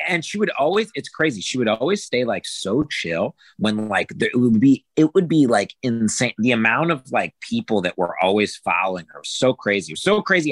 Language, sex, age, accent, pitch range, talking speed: English, male, 30-49, American, 100-155 Hz, 235 wpm